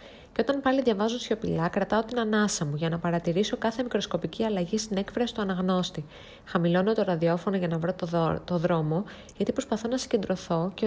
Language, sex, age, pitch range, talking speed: Greek, female, 20-39, 170-220 Hz, 190 wpm